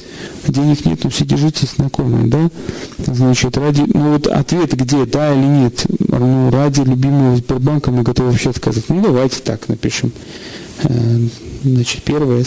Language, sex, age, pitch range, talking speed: Russian, male, 40-59, 125-150 Hz, 150 wpm